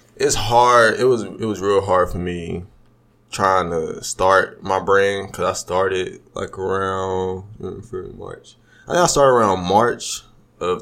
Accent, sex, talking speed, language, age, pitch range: American, male, 155 wpm, English, 20-39, 95-115 Hz